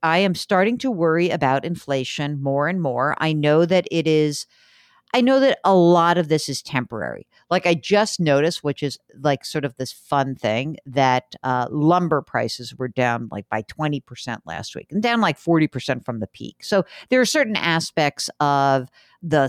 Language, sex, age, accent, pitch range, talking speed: English, female, 50-69, American, 135-200 Hz, 190 wpm